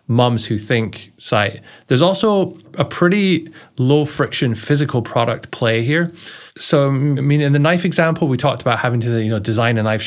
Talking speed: 185 wpm